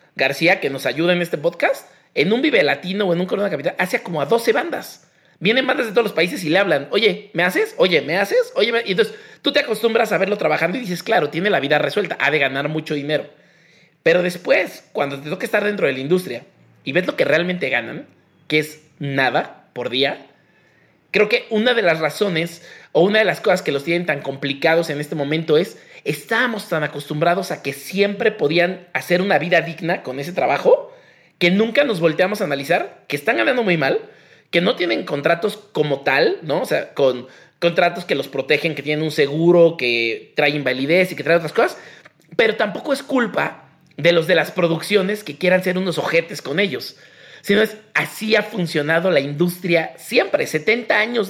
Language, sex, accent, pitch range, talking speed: Spanish, male, Mexican, 155-215 Hz, 205 wpm